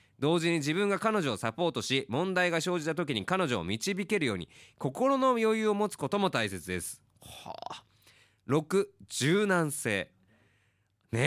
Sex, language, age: male, Japanese, 20-39